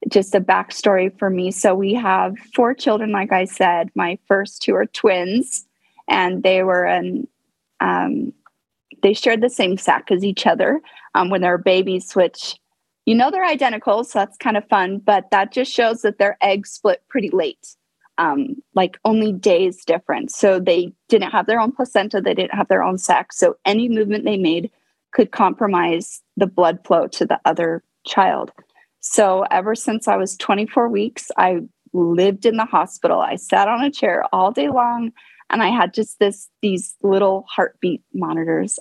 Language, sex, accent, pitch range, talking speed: English, female, American, 185-235 Hz, 180 wpm